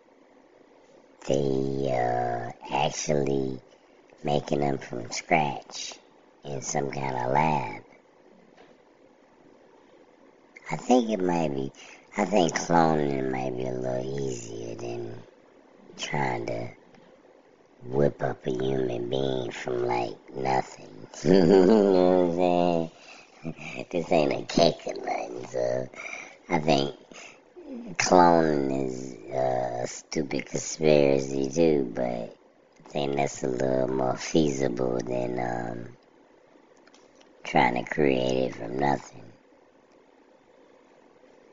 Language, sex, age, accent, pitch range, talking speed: English, male, 50-69, American, 65-90 Hz, 100 wpm